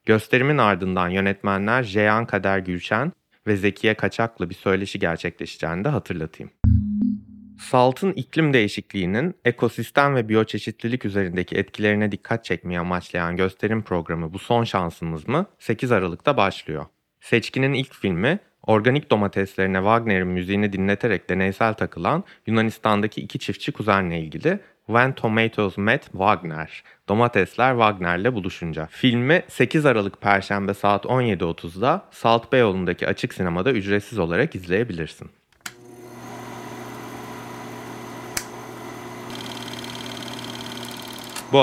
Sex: male